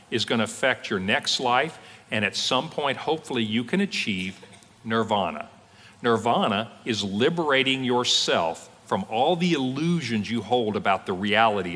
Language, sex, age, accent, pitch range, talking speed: English, male, 50-69, American, 110-155 Hz, 150 wpm